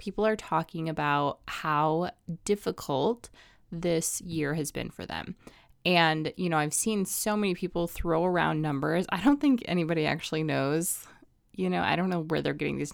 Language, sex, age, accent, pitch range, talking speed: English, female, 20-39, American, 160-200 Hz, 175 wpm